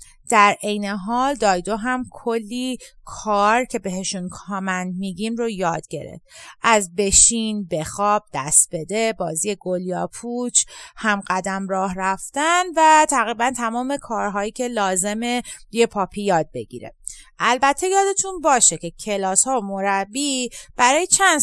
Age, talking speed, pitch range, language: 30-49, 130 wpm, 190-255 Hz, English